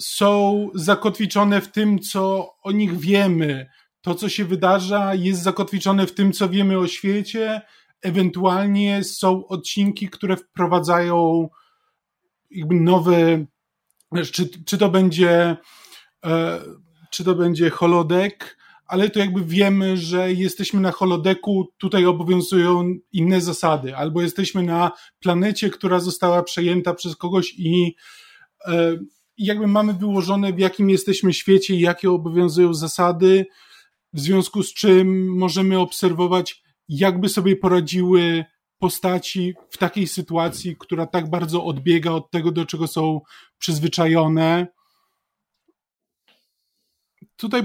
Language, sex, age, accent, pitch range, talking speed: Polish, male, 20-39, native, 175-200 Hz, 110 wpm